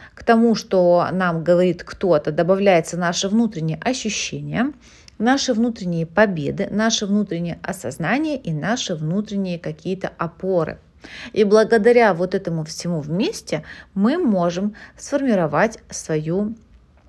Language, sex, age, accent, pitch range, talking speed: Russian, female, 30-49, native, 170-215 Hz, 110 wpm